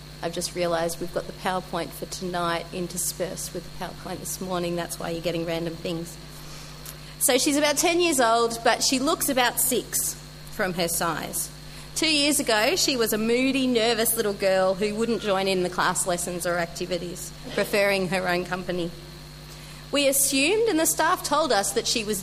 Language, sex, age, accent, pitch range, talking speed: English, female, 40-59, Australian, 175-240 Hz, 185 wpm